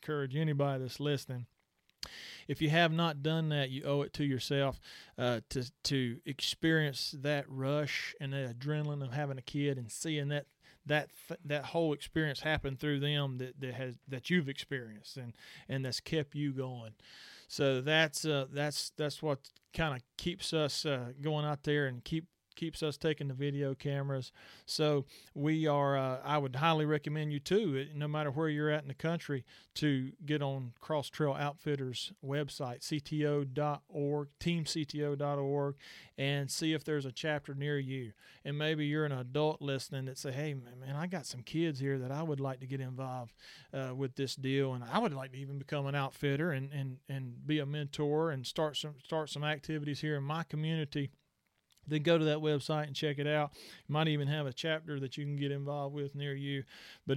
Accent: American